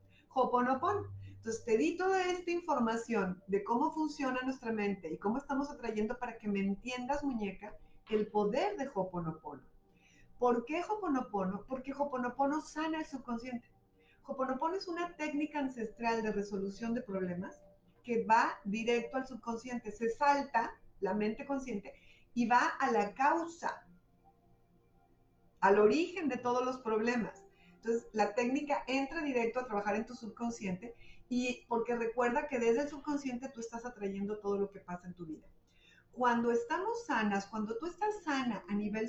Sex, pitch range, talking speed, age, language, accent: female, 210-275 Hz, 150 wpm, 40-59, Spanish, Mexican